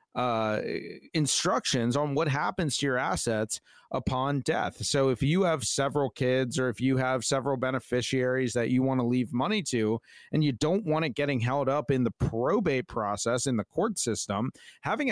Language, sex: English, male